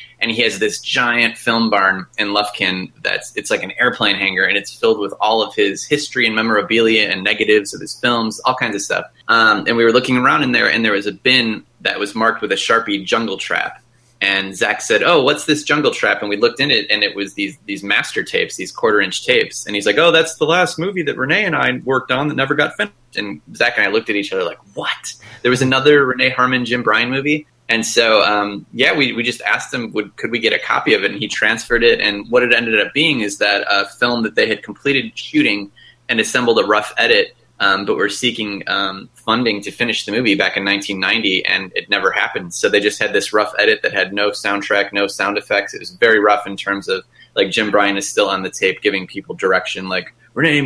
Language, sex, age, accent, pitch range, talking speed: English, male, 20-39, American, 105-150 Hz, 245 wpm